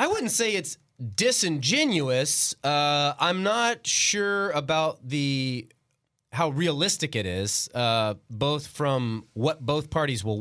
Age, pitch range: 30-49, 115-160 Hz